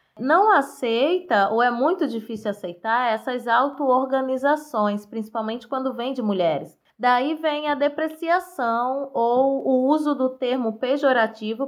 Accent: Brazilian